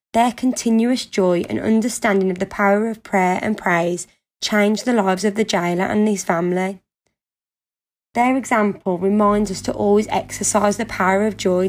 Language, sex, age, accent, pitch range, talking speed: English, female, 20-39, British, 190-225 Hz, 165 wpm